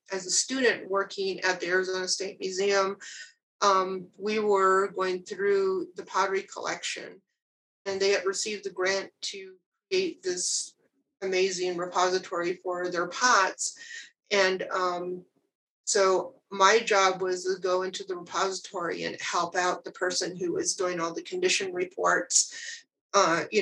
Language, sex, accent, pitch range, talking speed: English, female, American, 180-205 Hz, 140 wpm